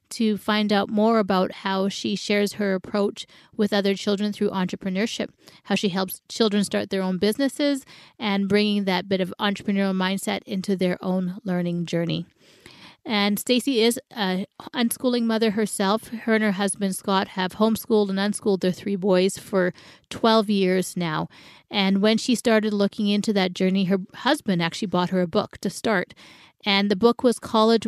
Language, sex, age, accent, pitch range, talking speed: English, female, 30-49, American, 190-220 Hz, 170 wpm